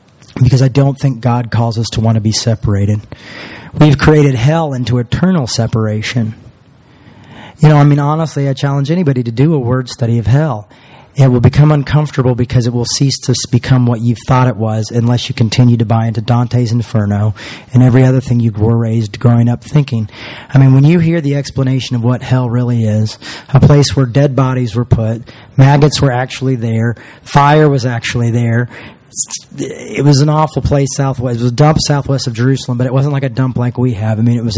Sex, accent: male, American